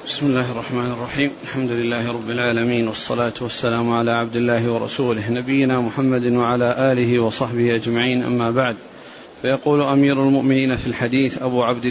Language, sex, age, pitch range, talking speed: Arabic, male, 40-59, 125-150 Hz, 145 wpm